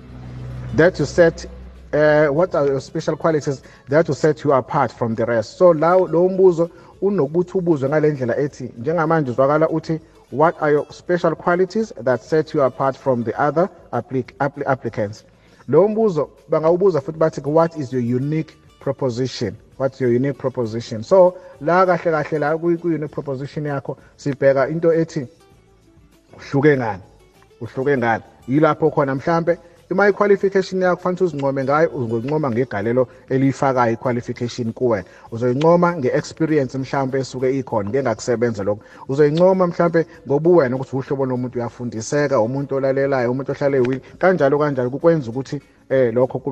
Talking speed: 115 wpm